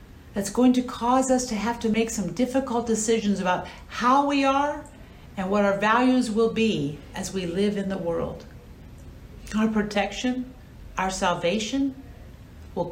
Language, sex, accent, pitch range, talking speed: English, female, American, 185-250 Hz, 155 wpm